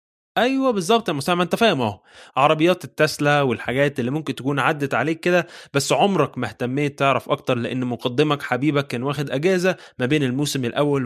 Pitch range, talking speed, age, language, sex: 125-175 Hz, 175 wpm, 20-39, Arabic, male